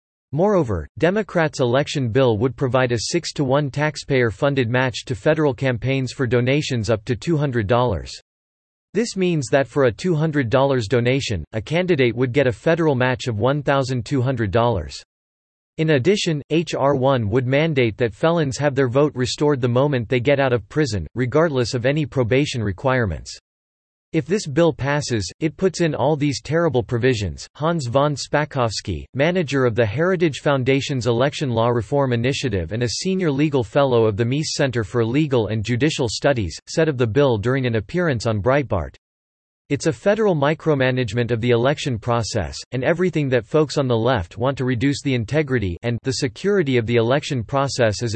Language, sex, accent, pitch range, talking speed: English, male, American, 120-150 Hz, 165 wpm